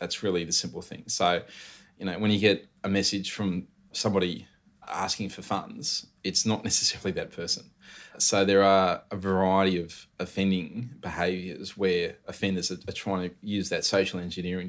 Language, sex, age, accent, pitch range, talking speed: English, male, 20-39, Australian, 90-100 Hz, 165 wpm